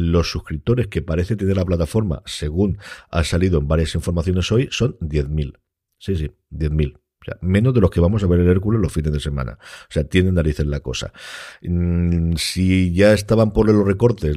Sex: male